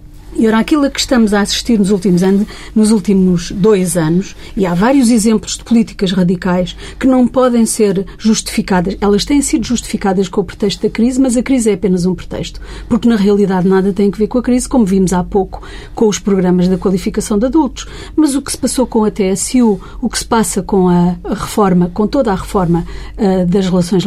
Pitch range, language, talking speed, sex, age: 190-245 Hz, Portuguese, 215 wpm, female, 40-59